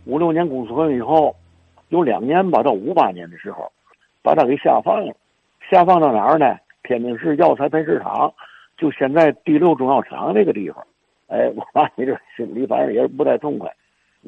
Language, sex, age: Chinese, male, 60-79